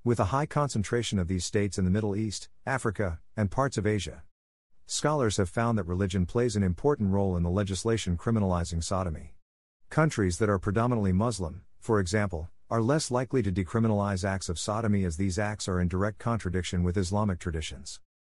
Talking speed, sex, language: 180 wpm, male, English